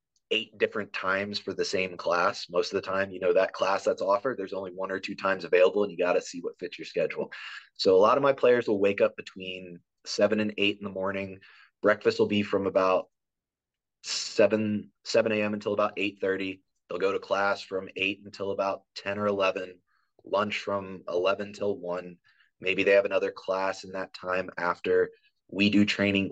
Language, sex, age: English, male, 20-39